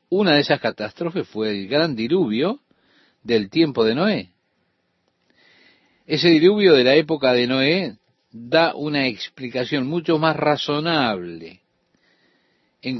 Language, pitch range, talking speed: Spanish, 120-160 Hz, 120 wpm